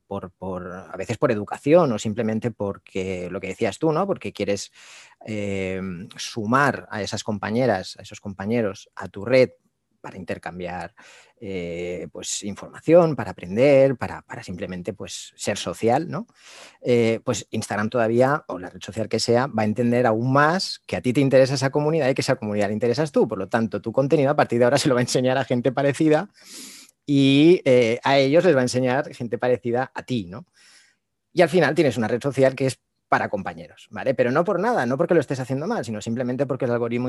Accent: Spanish